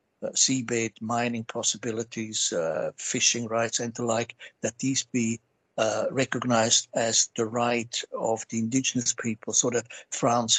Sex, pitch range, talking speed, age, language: male, 110-120 Hz, 135 wpm, 60-79, English